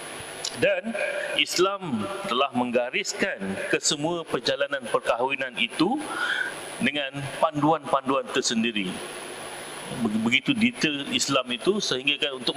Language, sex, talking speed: English, male, 80 wpm